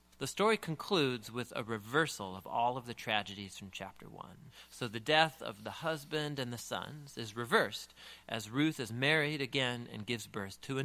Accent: American